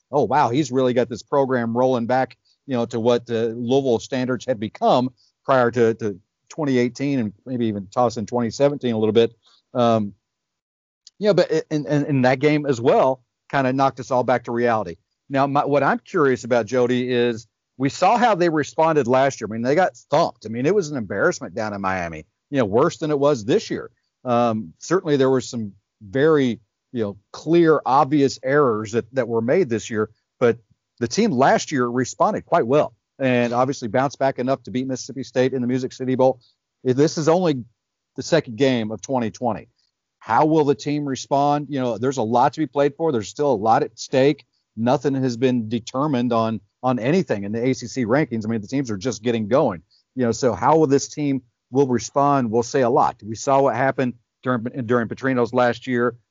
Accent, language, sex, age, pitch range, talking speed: American, English, male, 50-69, 115-140 Hz, 210 wpm